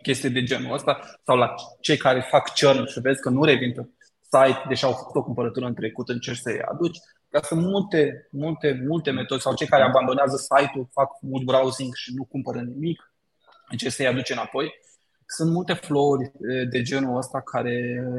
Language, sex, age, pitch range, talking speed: Romanian, male, 20-39, 130-150 Hz, 185 wpm